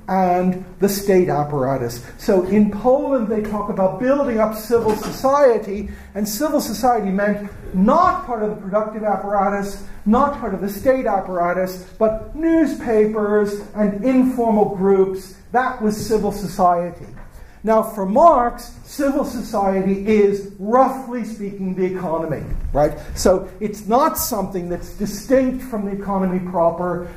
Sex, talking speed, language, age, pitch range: male, 135 wpm, English, 50-69, 190-235 Hz